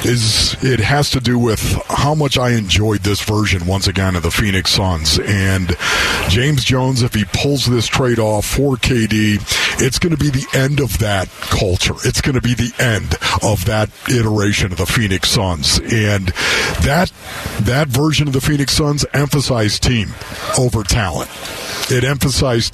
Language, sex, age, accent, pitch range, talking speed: English, male, 50-69, American, 100-135 Hz, 170 wpm